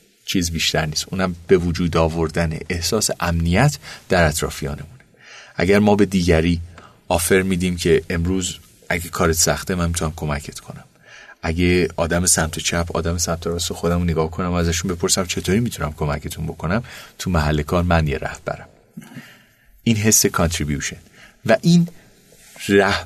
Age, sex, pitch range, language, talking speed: 30-49, male, 80-95 Hz, Persian, 140 wpm